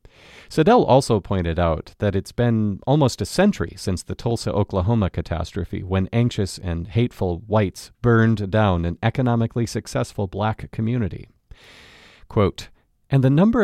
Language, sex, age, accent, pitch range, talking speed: English, male, 40-59, American, 95-135 Hz, 130 wpm